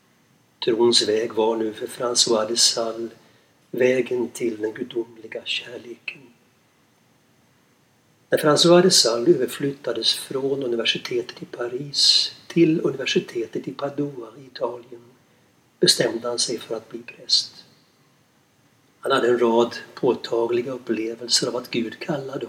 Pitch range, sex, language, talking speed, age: 115-150 Hz, male, Swedish, 110 wpm, 60-79